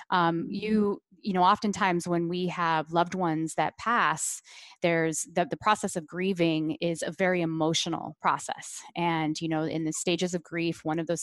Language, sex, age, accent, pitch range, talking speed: English, female, 20-39, American, 165-190 Hz, 180 wpm